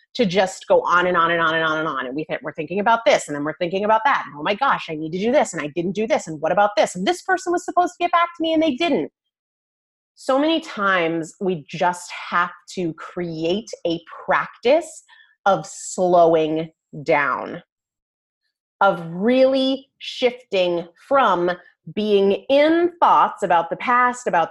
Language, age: English, 30-49